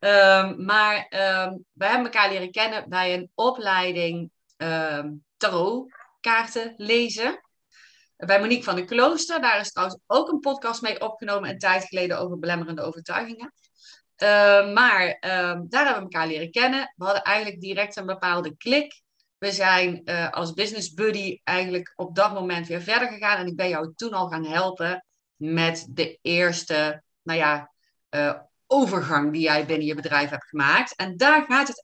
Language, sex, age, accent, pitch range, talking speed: Dutch, female, 30-49, Dutch, 170-220 Hz, 170 wpm